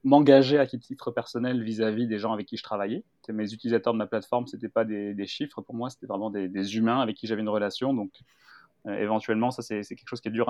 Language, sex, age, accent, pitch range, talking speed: French, male, 20-39, French, 105-125 Hz, 255 wpm